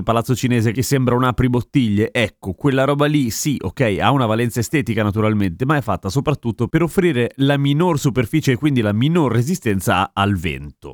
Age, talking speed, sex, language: 30-49, 185 wpm, male, Italian